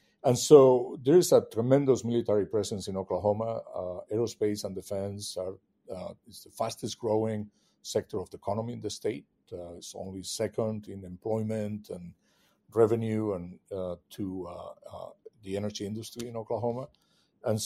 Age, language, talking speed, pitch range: 50-69, English, 155 wpm, 95-115 Hz